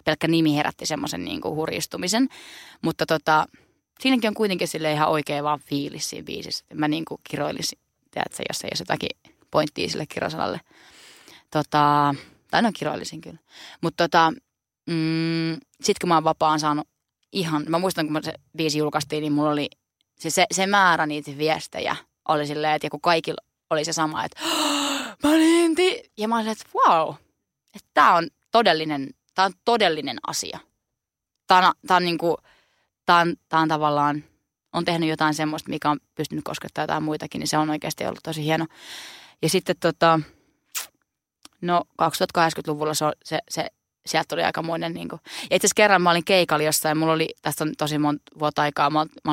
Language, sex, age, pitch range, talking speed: Finnish, female, 20-39, 150-175 Hz, 165 wpm